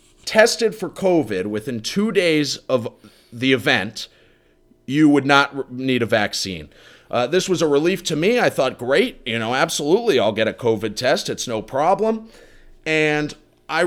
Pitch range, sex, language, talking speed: 110-150 Hz, male, English, 165 wpm